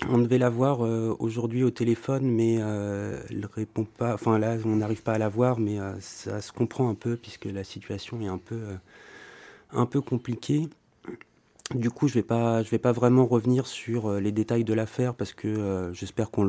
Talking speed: 190 wpm